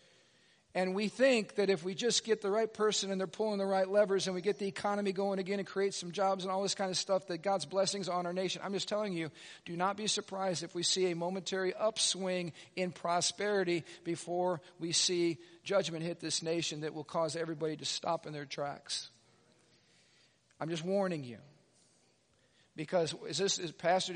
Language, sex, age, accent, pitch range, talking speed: English, male, 50-69, American, 170-195 Hz, 200 wpm